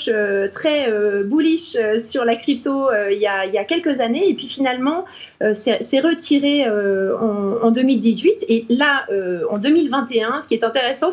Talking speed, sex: 200 wpm, female